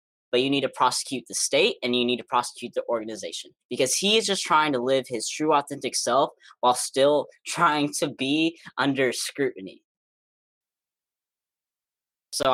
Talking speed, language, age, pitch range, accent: 160 wpm, English, 10-29, 120-160 Hz, American